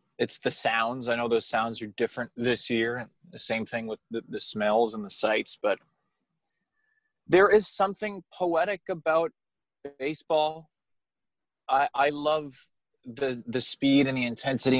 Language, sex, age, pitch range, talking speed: English, male, 20-39, 110-150 Hz, 150 wpm